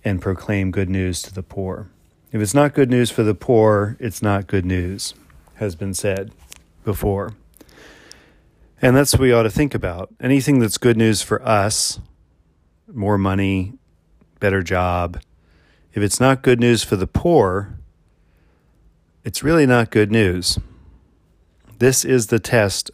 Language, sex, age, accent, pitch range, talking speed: English, male, 40-59, American, 85-110 Hz, 150 wpm